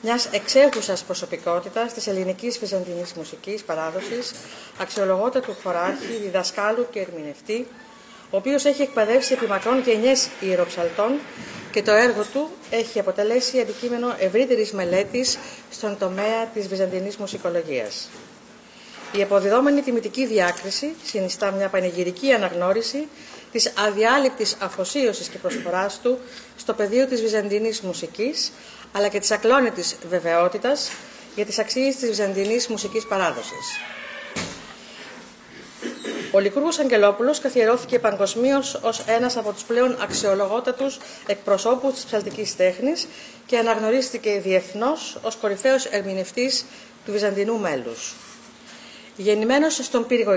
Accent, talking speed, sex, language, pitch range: native, 110 wpm, female, Greek, 195-250 Hz